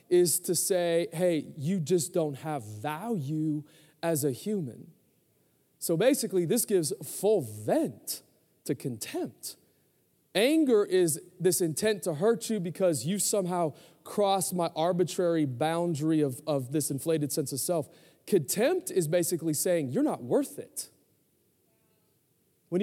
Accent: American